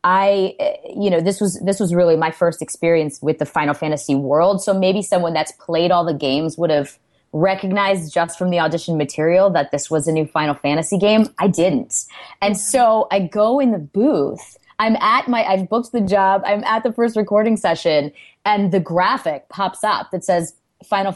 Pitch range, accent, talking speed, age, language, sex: 160-205 Hz, American, 200 wpm, 20-39, English, female